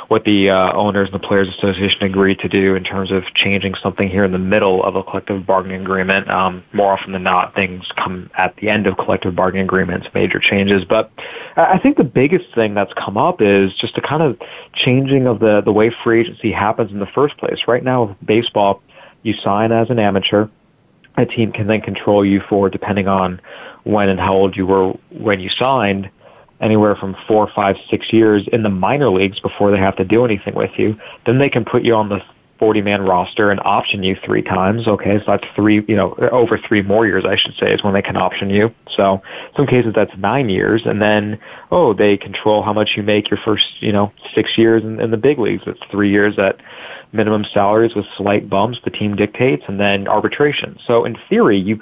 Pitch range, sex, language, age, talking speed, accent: 95-110 Hz, male, English, 30-49, 220 wpm, American